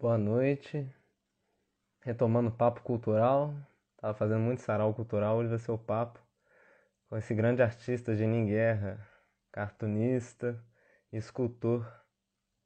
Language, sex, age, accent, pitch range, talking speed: Portuguese, male, 20-39, Brazilian, 105-120 Hz, 115 wpm